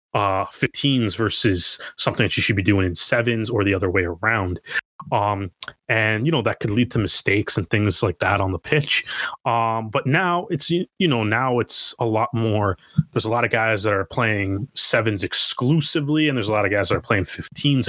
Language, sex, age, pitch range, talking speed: English, male, 20-39, 105-135 Hz, 215 wpm